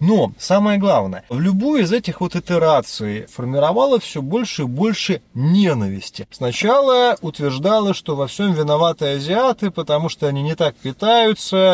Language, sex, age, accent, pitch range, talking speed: Russian, male, 30-49, native, 140-200 Hz, 145 wpm